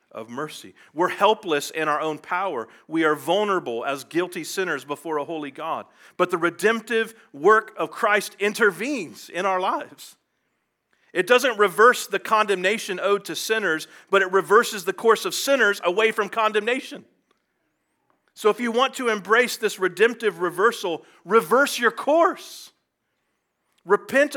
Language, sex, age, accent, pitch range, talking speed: English, male, 40-59, American, 165-225 Hz, 145 wpm